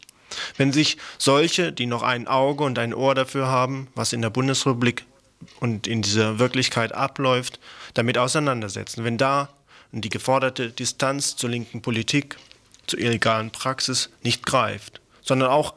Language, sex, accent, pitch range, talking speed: German, male, German, 115-135 Hz, 145 wpm